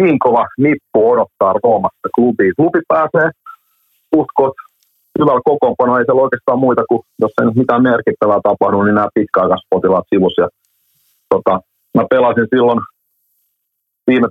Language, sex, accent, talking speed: Finnish, male, native, 125 wpm